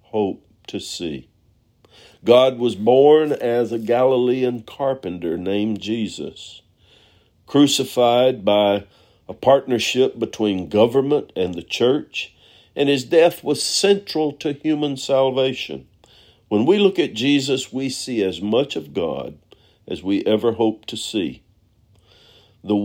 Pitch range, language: 110-140 Hz, English